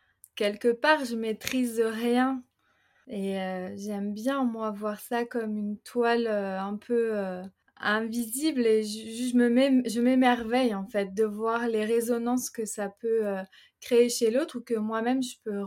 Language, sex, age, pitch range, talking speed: French, female, 20-39, 200-240 Hz, 170 wpm